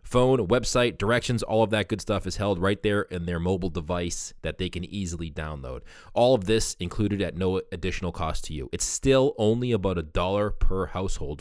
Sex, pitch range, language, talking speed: male, 85-110 Hz, English, 205 wpm